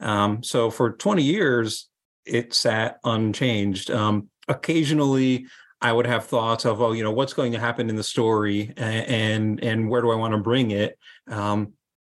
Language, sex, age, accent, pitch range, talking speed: English, male, 30-49, American, 105-125 Hz, 180 wpm